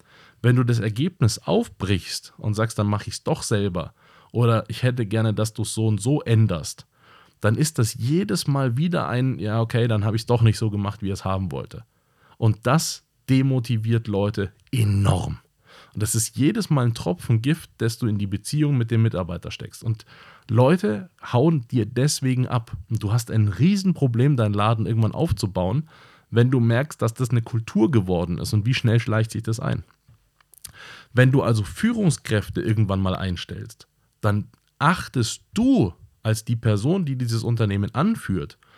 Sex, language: male, German